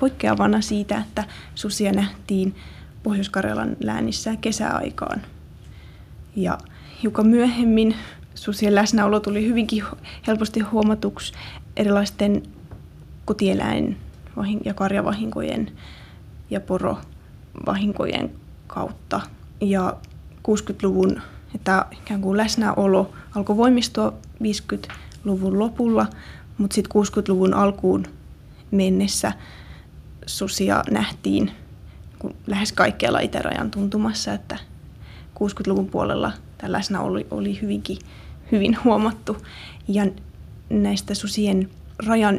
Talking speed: 85 wpm